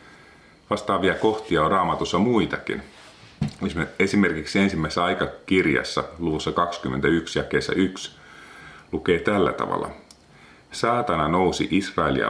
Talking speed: 95 wpm